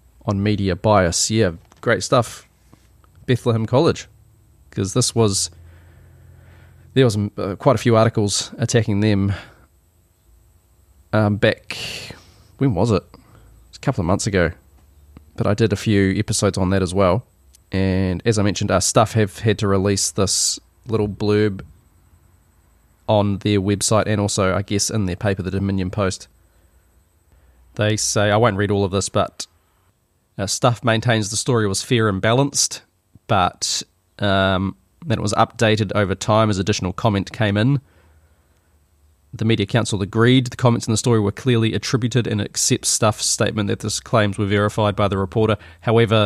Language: English